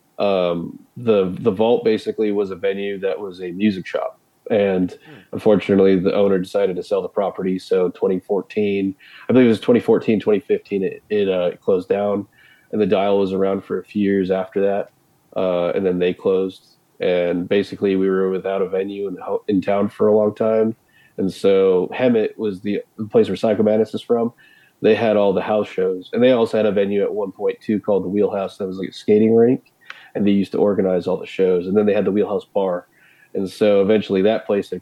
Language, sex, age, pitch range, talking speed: English, male, 30-49, 95-110 Hz, 210 wpm